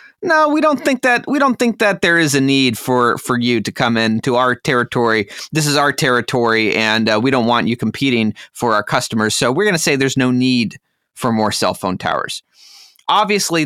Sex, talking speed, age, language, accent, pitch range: male, 215 wpm, 30-49, English, American, 120-155 Hz